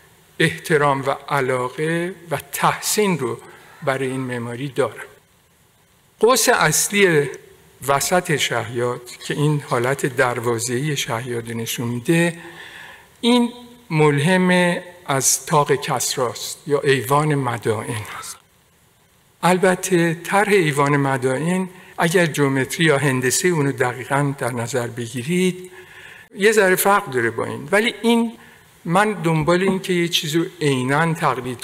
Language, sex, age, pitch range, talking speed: Persian, male, 50-69, 130-180 Hz, 115 wpm